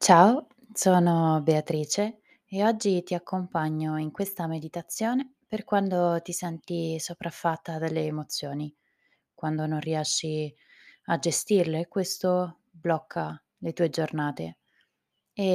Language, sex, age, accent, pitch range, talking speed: Italian, female, 20-39, native, 155-180 Hz, 110 wpm